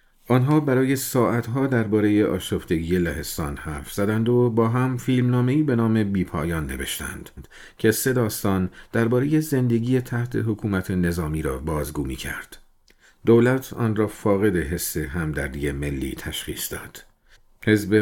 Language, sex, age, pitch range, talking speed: Persian, male, 50-69, 85-115 Hz, 125 wpm